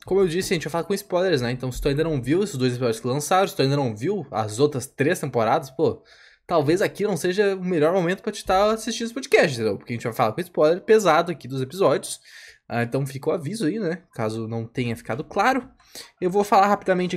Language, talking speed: Portuguese, 250 wpm